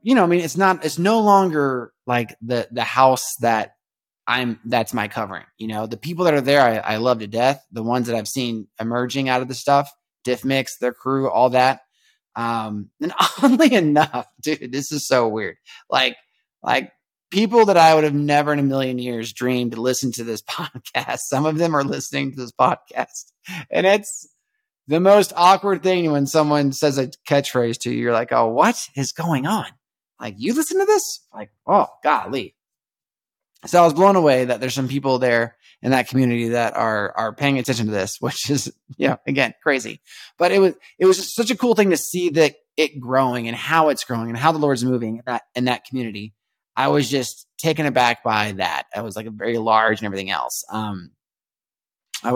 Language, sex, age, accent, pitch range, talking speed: English, male, 20-39, American, 115-155 Hz, 205 wpm